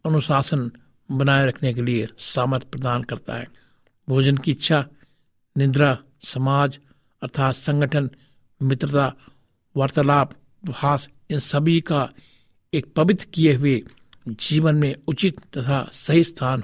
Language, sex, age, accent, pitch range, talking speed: Hindi, male, 60-79, native, 130-160 Hz, 110 wpm